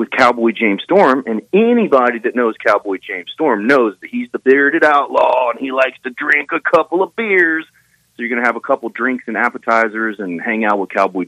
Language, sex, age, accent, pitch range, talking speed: English, male, 40-59, American, 105-140 Hz, 220 wpm